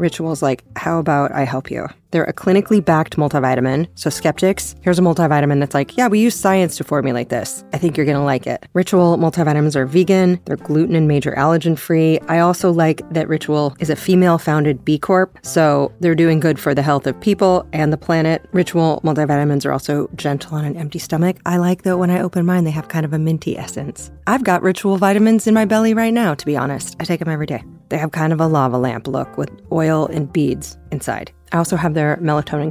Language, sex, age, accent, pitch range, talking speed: English, female, 30-49, American, 145-180 Hz, 225 wpm